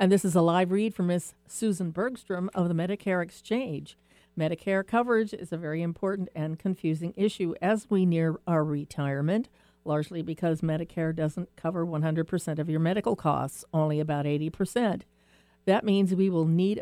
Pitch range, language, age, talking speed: 165-205 Hz, English, 50-69, 165 wpm